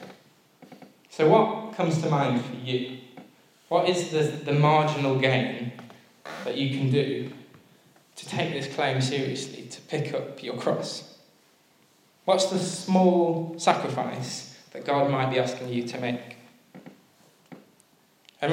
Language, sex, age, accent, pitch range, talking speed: English, male, 10-29, British, 130-165 Hz, 130 wpm